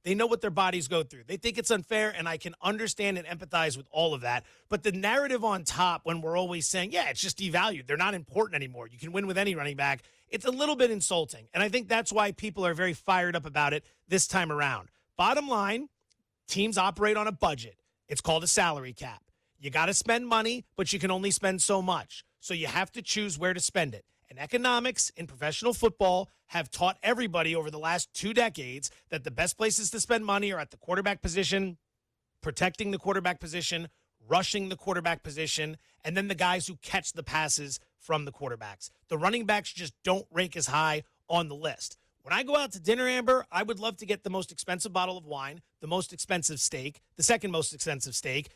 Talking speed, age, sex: 220 wpm, 30-49, male